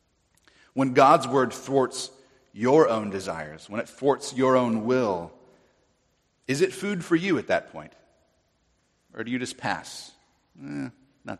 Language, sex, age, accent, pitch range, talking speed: English, male, 40-59, American, 105-140 Hz, 145 wpm